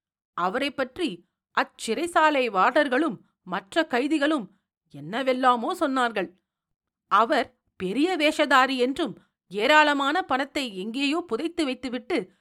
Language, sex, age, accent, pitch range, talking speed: Tamil, female, 50-69, native, 215-315 Hz, 80 wpm